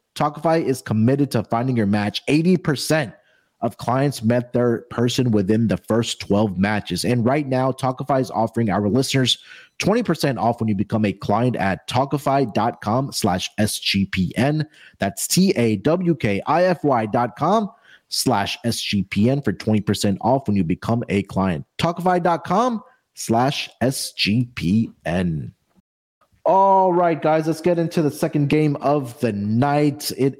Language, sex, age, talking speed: English, male, 30-49, 130 wpm